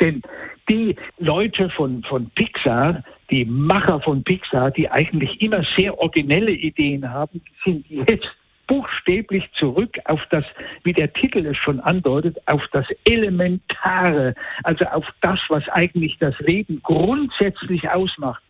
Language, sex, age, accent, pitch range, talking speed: German, male, 60-79, German, 150-195 Hz, 135 wpm